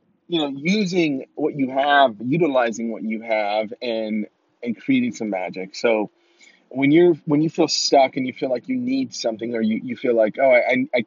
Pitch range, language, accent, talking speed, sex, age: 110-170 Hz, English, American, 200 wpm, male, 30-49